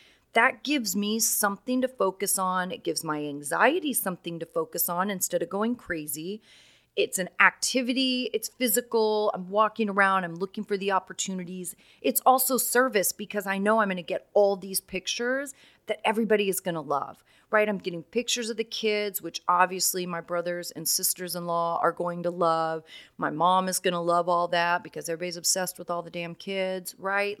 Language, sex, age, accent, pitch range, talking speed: English, female, 30-49, American, 175-225 Hz, 185 wpm